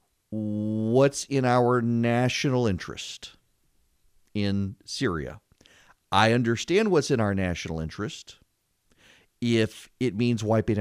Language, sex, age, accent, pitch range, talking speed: English, male, 50-69, American, 100-135 Hz, 100 wpm